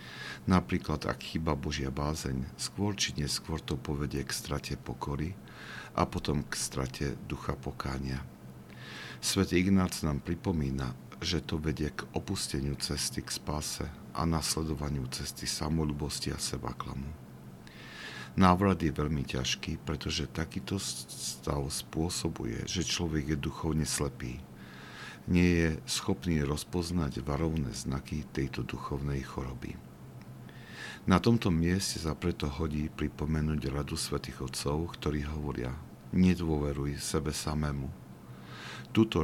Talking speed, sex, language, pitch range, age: 115 wpm, male, Slovak, 65-85 Hz, 50-69